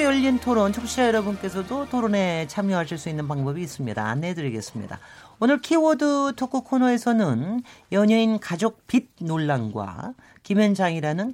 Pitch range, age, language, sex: 145-220 Hz, 40-59, Korean, male